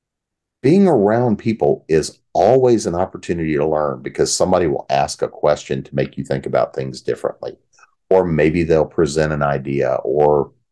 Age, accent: 40-59, American